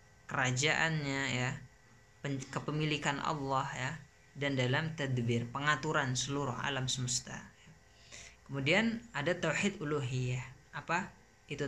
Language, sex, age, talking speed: Indonesian, female, 20-39, 90 wpm